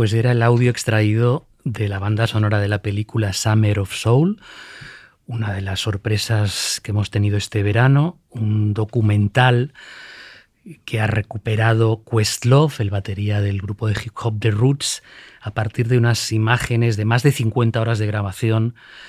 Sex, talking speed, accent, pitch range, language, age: male, 160 wpm, Spanish, 110-125 Hz, Spanish, 30-49